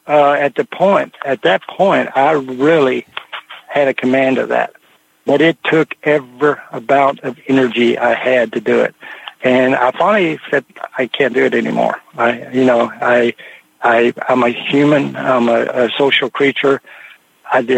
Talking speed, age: 170 wpm, 60-79